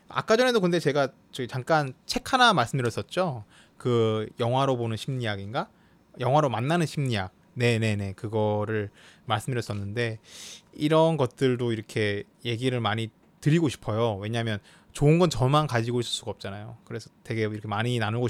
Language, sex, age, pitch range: Korean, male, 20-39, 110-135 Hz